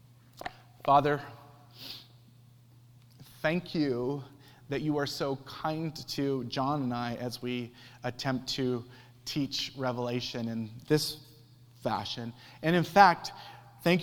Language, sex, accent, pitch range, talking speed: English, male, American, 125-150 Hz, 105 wpm